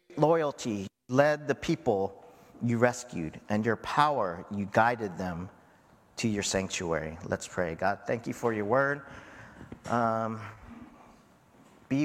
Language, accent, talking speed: English, American, 125 wpm